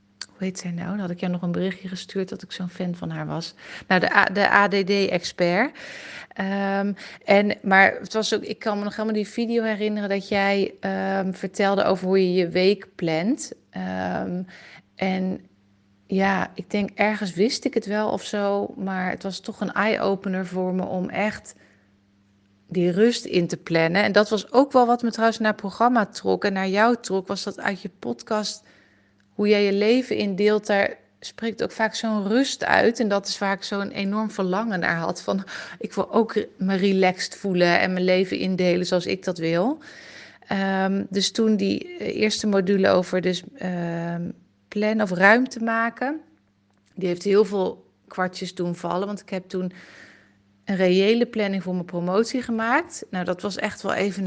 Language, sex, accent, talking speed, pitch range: Dutch, female, Dutch, 185 wpm, 180-215 Hz